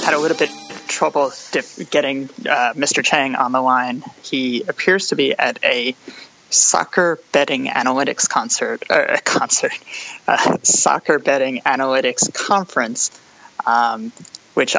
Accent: American